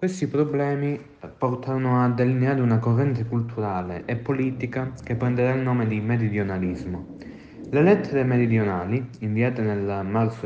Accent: native